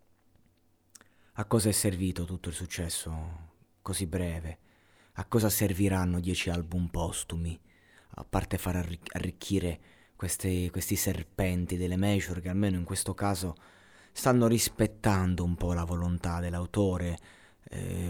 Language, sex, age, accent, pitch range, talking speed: Italian, male, 30-49, native, 85-105 Hz, 125 wpm